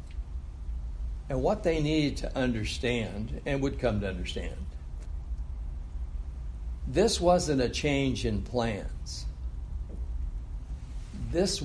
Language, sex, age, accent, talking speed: English, male, 60-79, American, 95 wpm